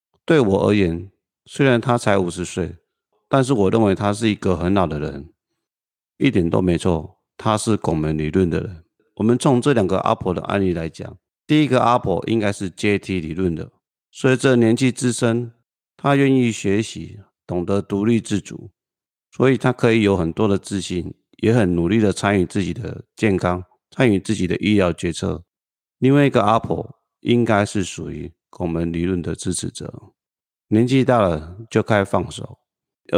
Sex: male